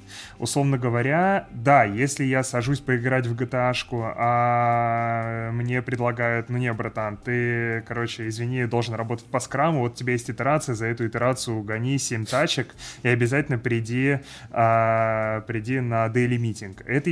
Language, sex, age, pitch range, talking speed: Russian, male, 20-39, 115-140 Hz, 145 wpm